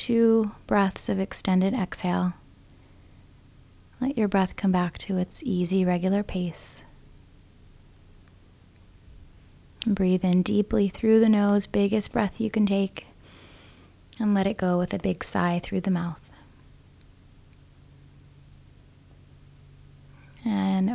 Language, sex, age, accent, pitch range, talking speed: English, female, 30-49, American, 170-200 Hz, 110 wpm